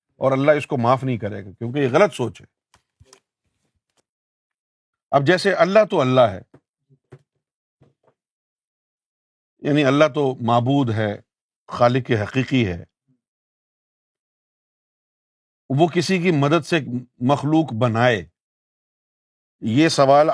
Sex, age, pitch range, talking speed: male, 50-69, 120-170 Hz, 105 wpm